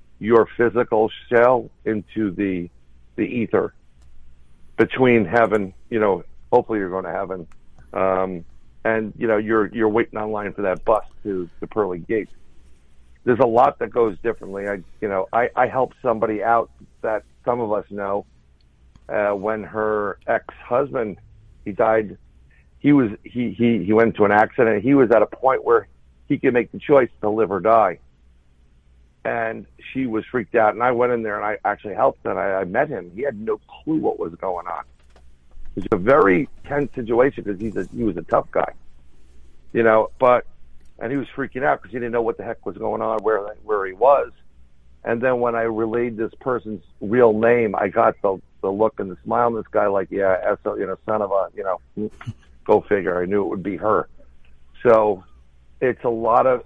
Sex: male